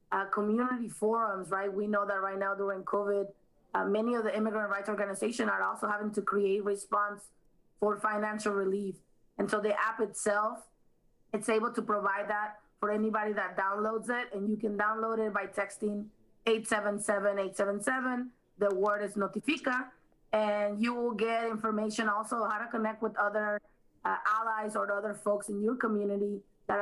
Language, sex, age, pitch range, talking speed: English, female, 20-39, 200-220 Hz, 165 wpm